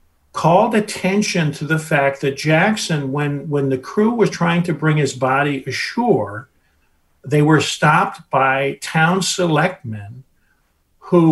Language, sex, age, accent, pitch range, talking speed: English, male, 50-69, American, 130-155 Hz, 135 wpm